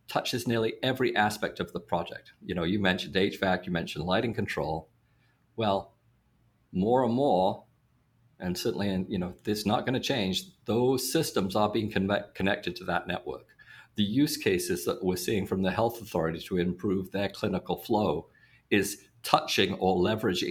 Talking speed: 170 wpm